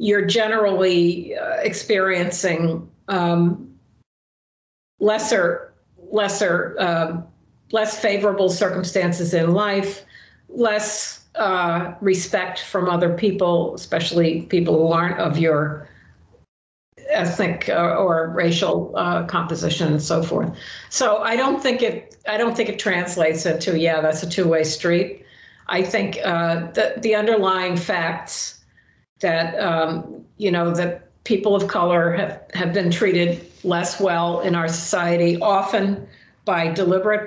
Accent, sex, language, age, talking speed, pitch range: American, female, English, 50-69, 125 wpm, 170-210 Hz